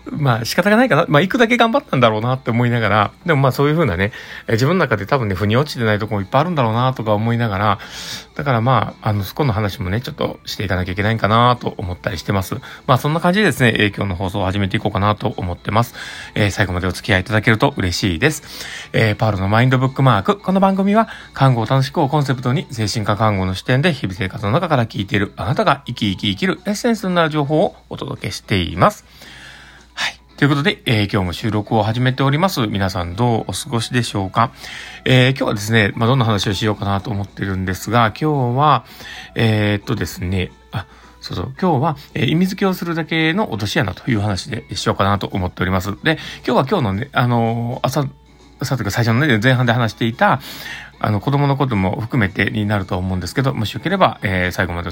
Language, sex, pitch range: Japanese, male, 105-140 Hz